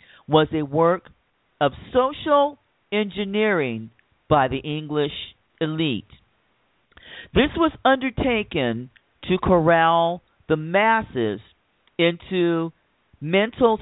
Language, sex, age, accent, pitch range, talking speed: English, male, 50-69, American, 140-205 Hz, 80 wpm